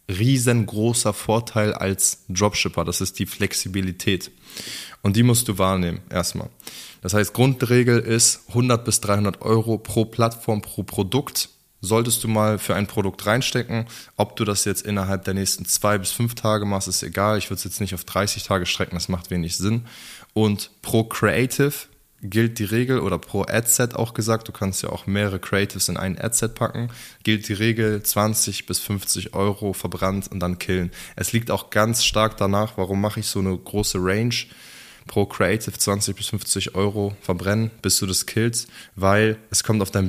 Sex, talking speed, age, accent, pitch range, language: male, 180 wpm, 20-39, German, 95-115 Hz, German